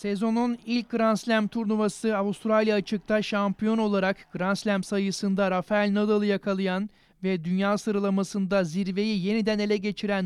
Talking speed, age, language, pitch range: 130 wpm, 30-49, Turkish, 190-210 Hz